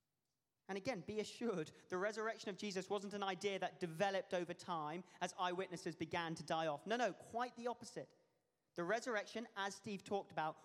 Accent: British